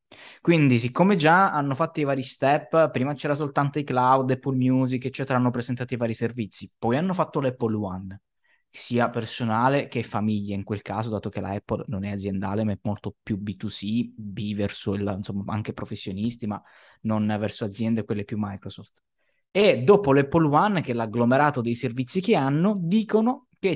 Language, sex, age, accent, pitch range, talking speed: Italian, male, 20-39, native, 105-135 Hz, 175 wpm